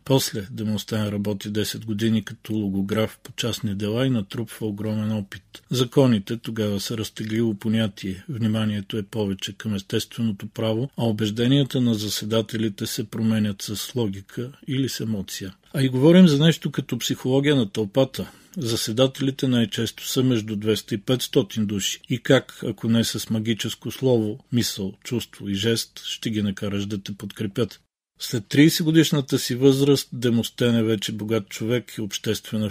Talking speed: 155 wpm